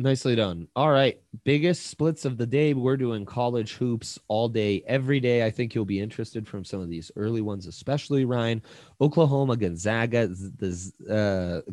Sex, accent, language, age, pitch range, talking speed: male, American, English, 30-49, 100-125 Hz, 170 wpm